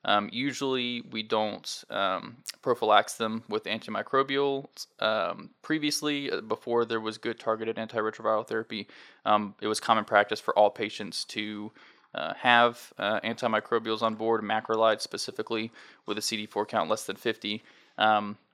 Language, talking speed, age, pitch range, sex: English, 140 wpm, 20-39, 110-120 Hz, male